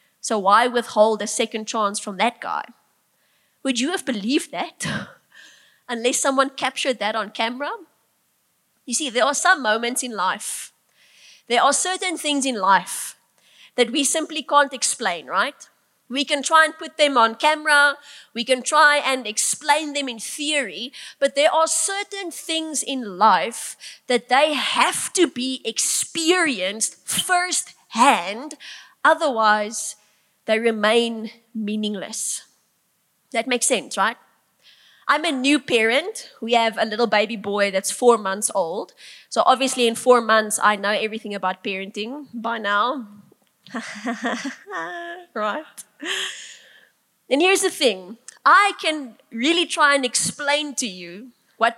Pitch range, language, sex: 215-290 Hz, English, female